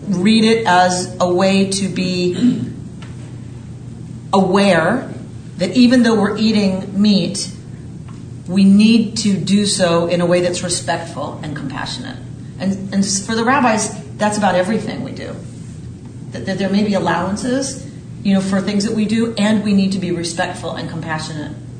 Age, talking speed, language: 40-59, 155 wpm, English